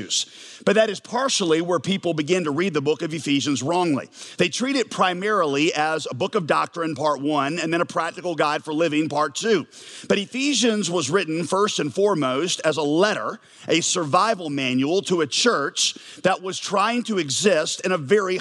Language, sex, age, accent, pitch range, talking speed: English, male, 40-59, American, 155-190 Hz, 190 wpm